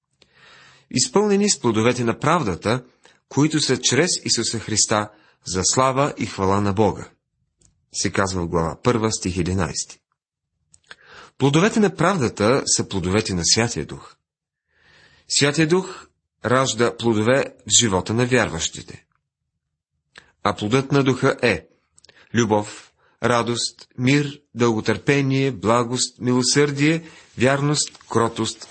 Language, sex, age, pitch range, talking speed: Bulgarian, male, 40-59, 105-140 Hz, 110 wpm